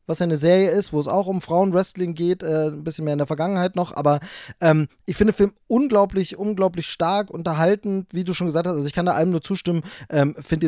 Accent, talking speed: German, 235 wpm